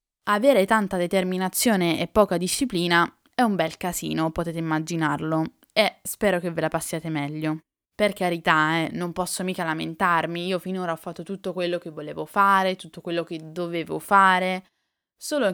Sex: female